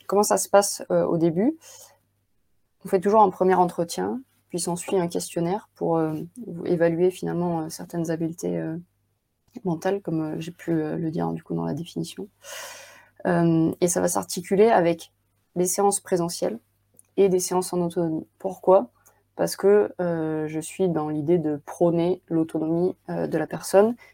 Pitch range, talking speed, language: 155-185 Hz, 170 wpm, French